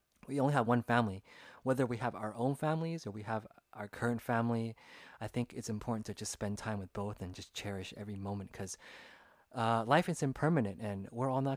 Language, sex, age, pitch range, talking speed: English, male, 20-39, 105-130 Hz, 215 wpm